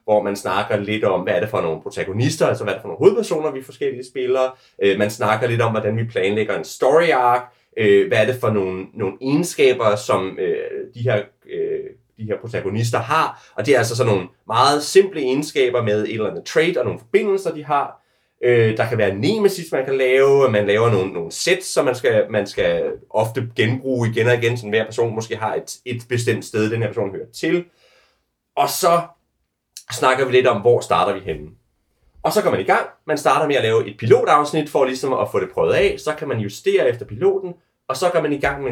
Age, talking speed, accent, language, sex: 30-49, 225 wpm, native, Danish, male